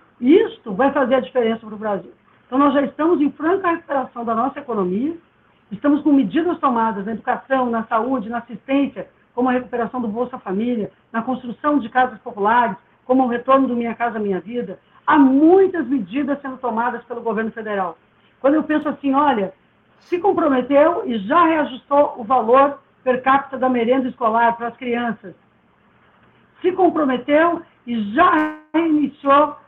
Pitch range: 230-290 Hz